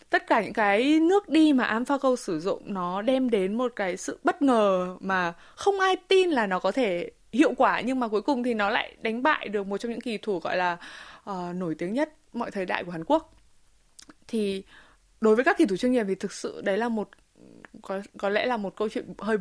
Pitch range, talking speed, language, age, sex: 195-275 Hz, 235 wpm, Vietnamese, 20-39, female